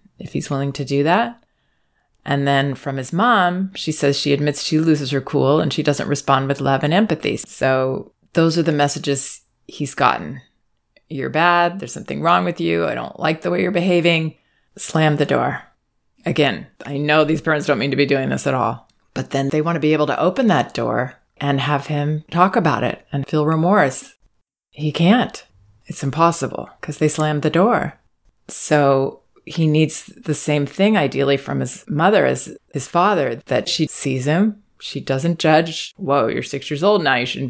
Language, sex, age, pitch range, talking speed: English, female, 30-49, 140-170 Hz, 195 wpm